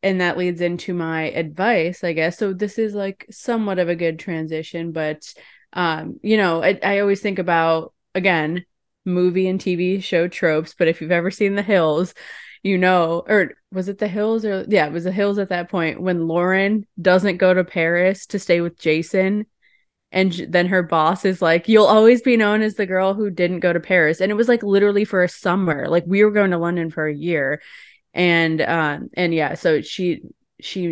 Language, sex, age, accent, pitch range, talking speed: English, female, 20-39, American, 165-200 Hz, 210 wpm